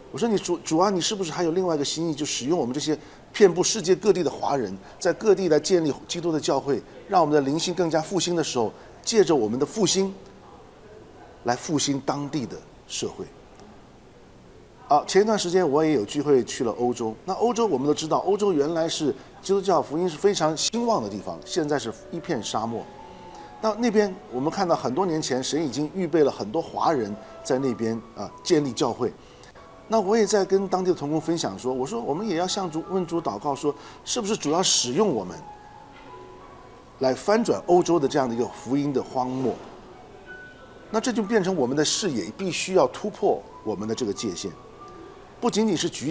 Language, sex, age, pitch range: Chinese, male, 50-69, 145-195 Hz